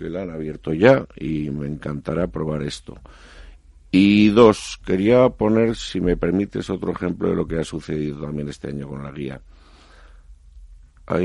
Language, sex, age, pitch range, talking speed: Spanish, male, 50-69, 70-90 Hz, 165 wpm